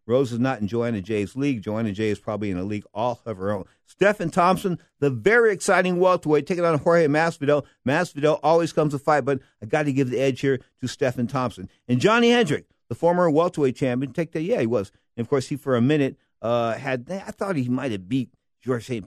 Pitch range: 115-165 Hz